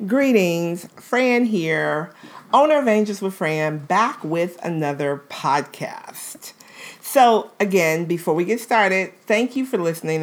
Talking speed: 130 wpm